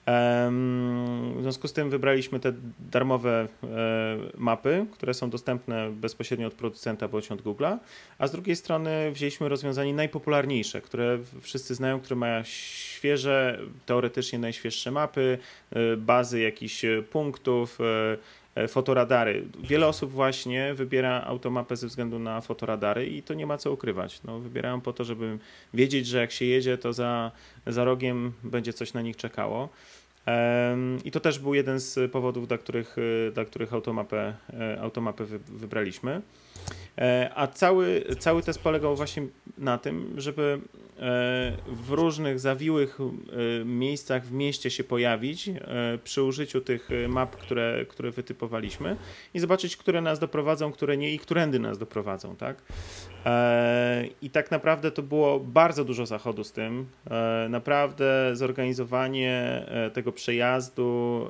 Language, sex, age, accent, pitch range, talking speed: Polish, male, 30-49, native, 115-140 Hz, 130 wpm